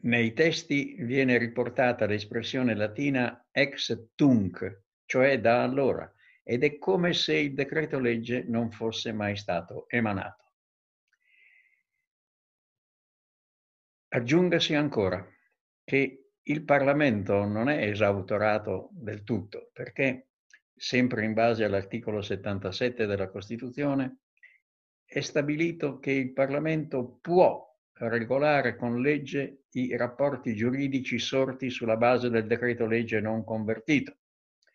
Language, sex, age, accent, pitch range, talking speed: Italian, male, 60-79, native, 110-140 Hz, 105 wpm